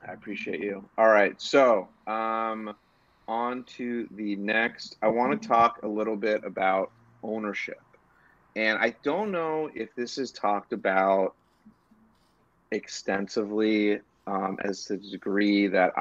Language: English